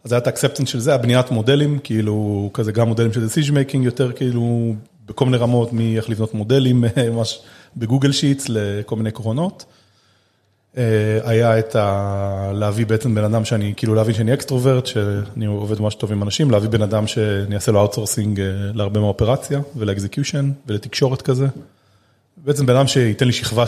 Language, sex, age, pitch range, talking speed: Hebrew, male, 30-49, 105-125 Hz, 160 wpm